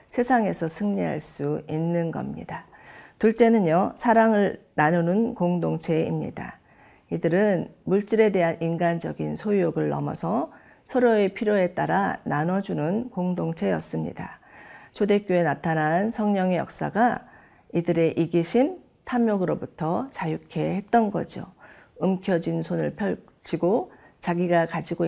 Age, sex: 40-59, female